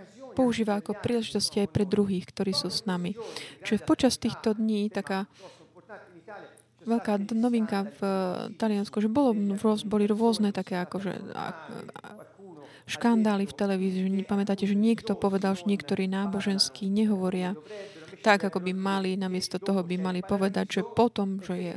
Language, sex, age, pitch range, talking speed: Slovak, female, 20-39, 185-220 Hz, 140 wpm